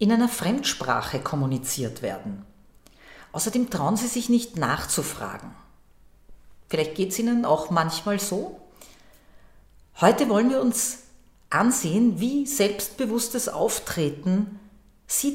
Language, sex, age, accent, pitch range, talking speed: German, female, 50-69, Austrian, 185-240 Hz, 105 wpm